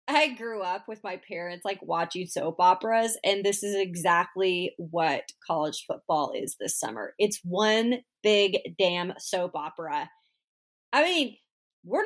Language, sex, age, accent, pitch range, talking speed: English, female, 30-49, American, 175-240 Hz, 145 wpm